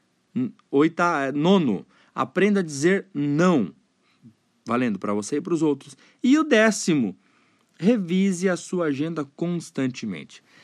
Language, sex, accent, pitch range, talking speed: Portuguese, male, Brazilian, 160-215 Hz, 115 wpm